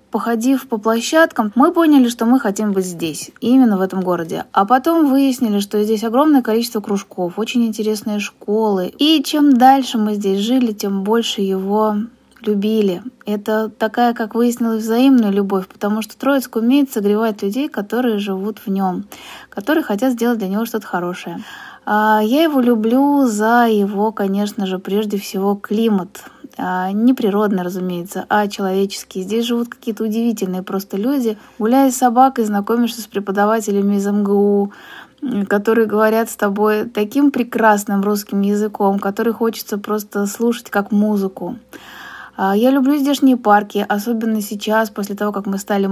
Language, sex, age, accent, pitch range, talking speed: Russian, female, 20-39, native, 200-235 Hz, 145 wpm